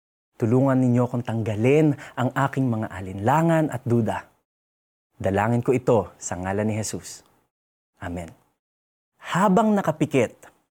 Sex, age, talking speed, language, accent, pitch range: male, 20-39, 110 wpm, Filipino, native, 100-140 Hz